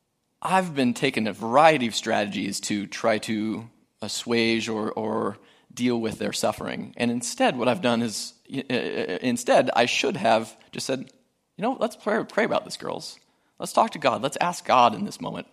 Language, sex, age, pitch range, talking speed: English, male, 20-39, 115-140 Hz, 180 wpm